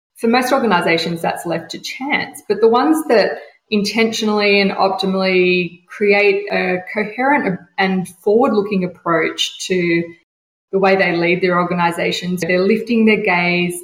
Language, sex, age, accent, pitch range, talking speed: English, female, 20-39, Australian, 180-220 Hz, 140 wpm